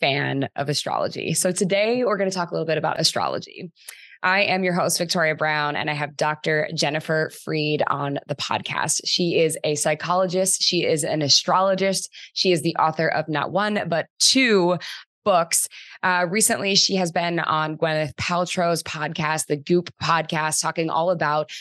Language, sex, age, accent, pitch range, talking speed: English, female, 20-39, American, 145-175 Hz, 170 wpm